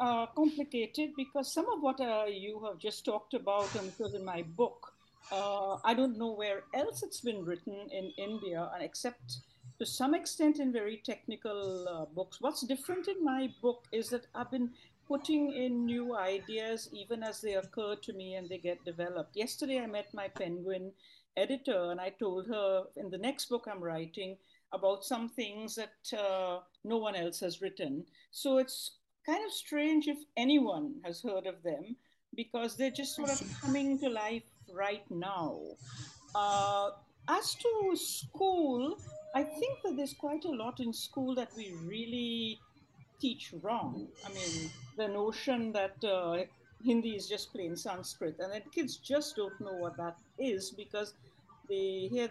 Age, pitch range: 60-79, 190-265 Hz